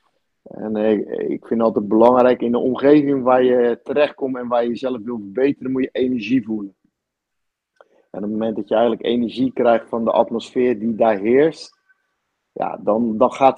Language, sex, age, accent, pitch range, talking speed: Dutch, male, 50-69, Dutch, 115-130 Hz, 170 wpm